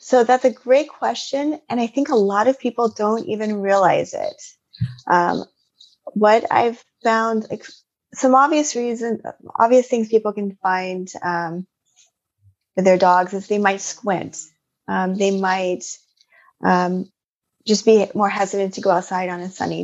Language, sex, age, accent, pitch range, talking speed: English, female, 30-49, American, 180-225 Hz, 155 wpm